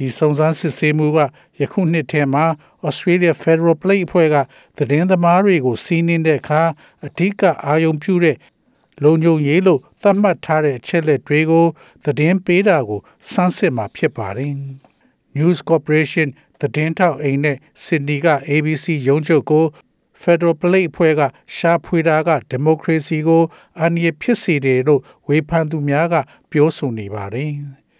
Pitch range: 145-175 Hz